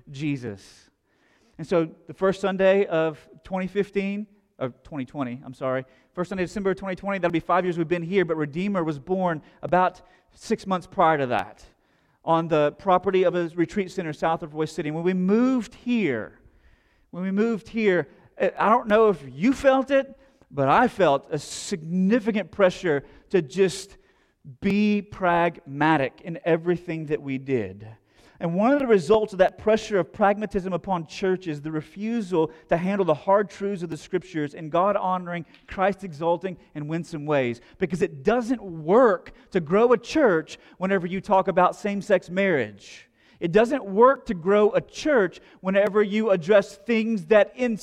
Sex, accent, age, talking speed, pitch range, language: male, American, 40-59, 165 wpm, 165-210 Hz, English